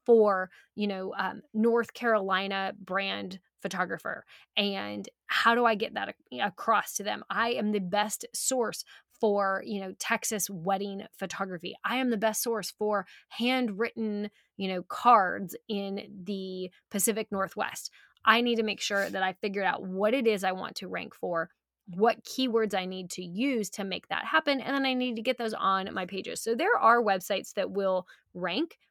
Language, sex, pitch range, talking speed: English, female, 190-230 Hz, 180 wpm